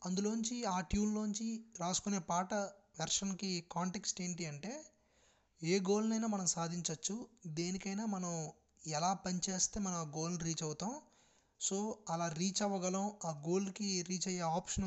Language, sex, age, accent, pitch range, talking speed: Telugu, male, 20-39, native, 170-200 Hz, 125 wpm